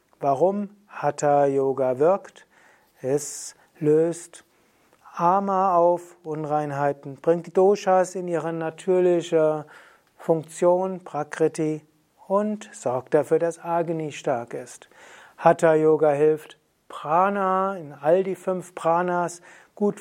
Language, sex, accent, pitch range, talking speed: German, male, German, 150-180 Hz, 95 wpm